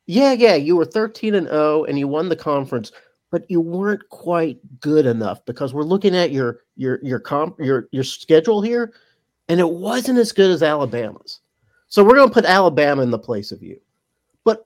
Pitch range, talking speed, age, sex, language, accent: 140-230 Hz, 200 wpm, 40-59, male, English, American